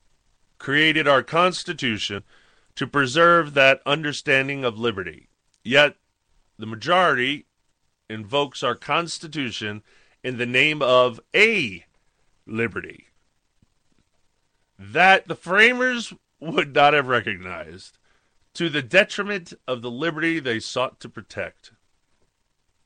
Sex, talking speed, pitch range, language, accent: male, 100 wpm, 115-165 Hz, English, American